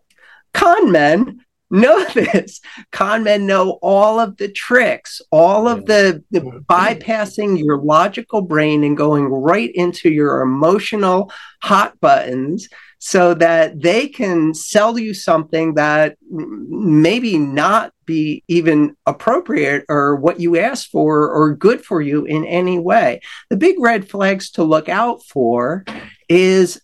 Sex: male